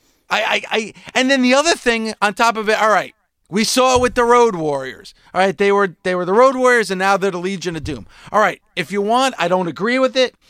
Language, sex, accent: English, male, American